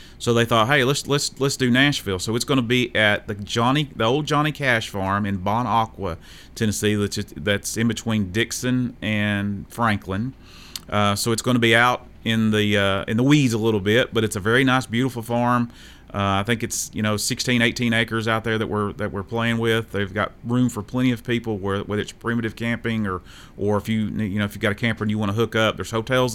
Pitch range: 105-125 Hz